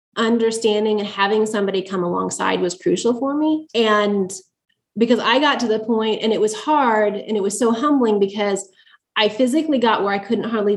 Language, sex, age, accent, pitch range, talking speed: English, female, 20-39, American, 195-235 Hz, 190 wpm